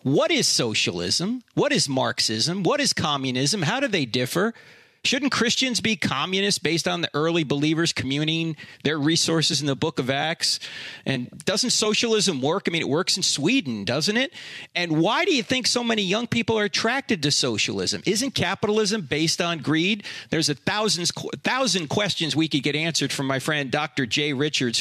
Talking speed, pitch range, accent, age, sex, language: 180 wpm, 140-190 Hz, American, 40-59, male, English